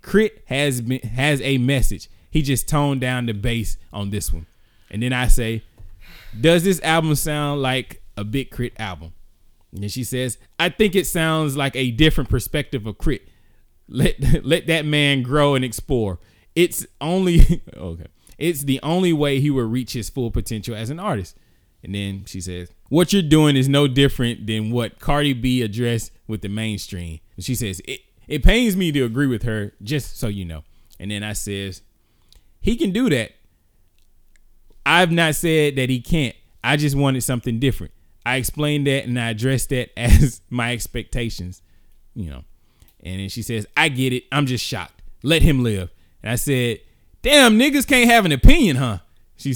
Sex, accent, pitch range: male, American, 95-140 Hz